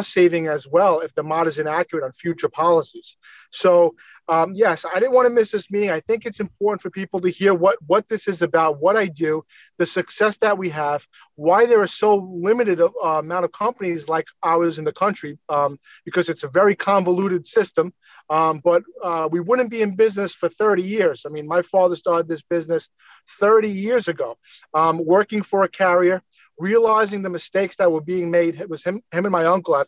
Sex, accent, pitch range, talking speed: male, American, 175-220 Hz, 205 wpm